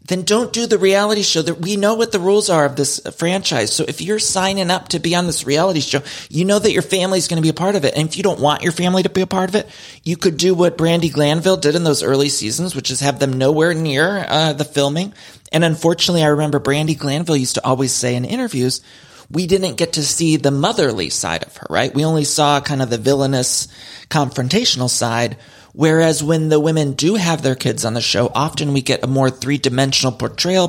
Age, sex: 30-49, male